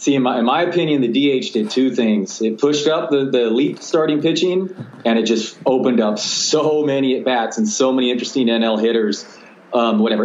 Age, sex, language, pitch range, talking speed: 30-49, male, English, 110-145 Hz, 210 wpm